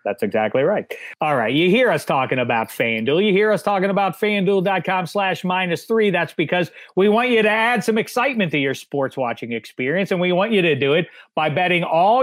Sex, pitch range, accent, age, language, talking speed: male, 140-180 Hz, American, 40-59, English, 215 wpm